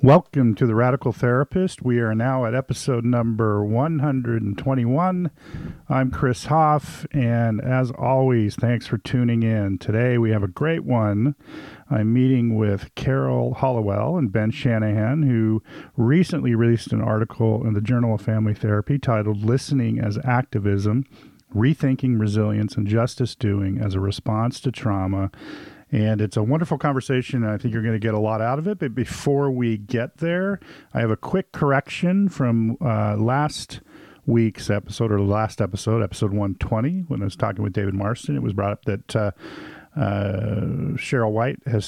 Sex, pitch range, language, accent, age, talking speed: male, 110-135 Hz, English, American, 50-69, 165 wpm